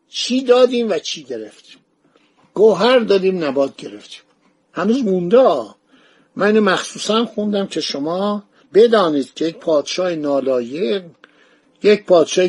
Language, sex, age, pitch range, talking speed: Persian, male, 60-79, 160-215 Hz, 105 wpm